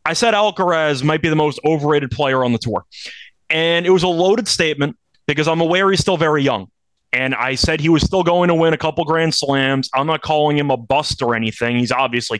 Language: English